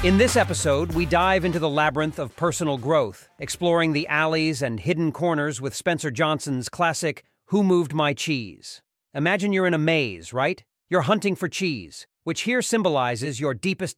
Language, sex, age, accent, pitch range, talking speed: English, male, 40-59, American, 145-190 Hz, 170 wpm